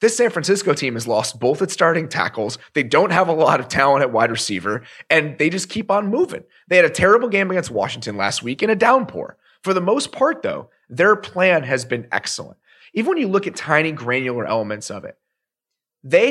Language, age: English, 30-49